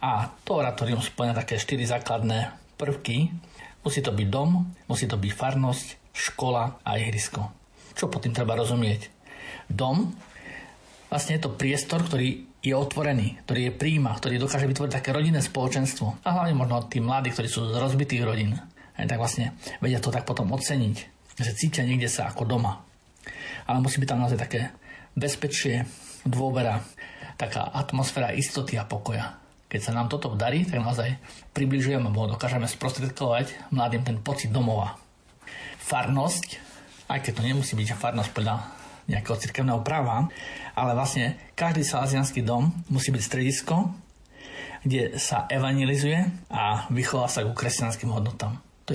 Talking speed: 150 wpm